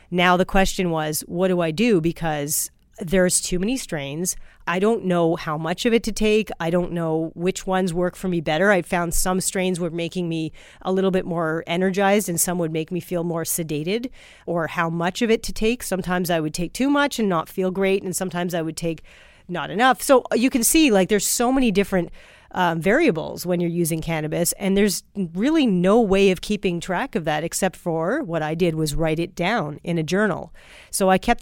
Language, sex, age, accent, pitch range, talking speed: English, female, 40-59, American, 170-205 Hz, 220 wpm